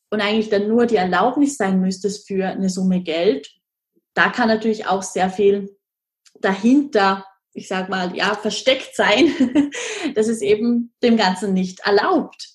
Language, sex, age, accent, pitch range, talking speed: German, female, 20-39, German, 190-225 Hz, 155 wpm